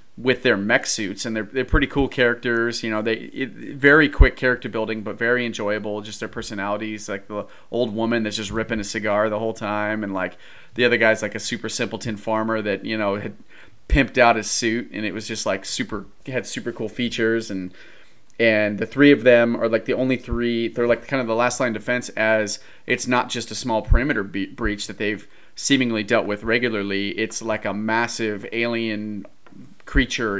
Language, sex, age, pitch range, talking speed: English, male, 30-49, 105-120 Hz, 205 wpm